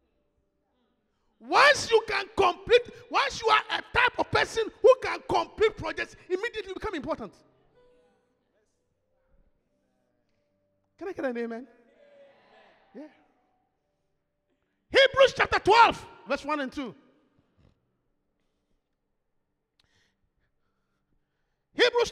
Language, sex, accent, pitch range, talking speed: English, male, Nigerian, 295-440 Hz, 85 wpm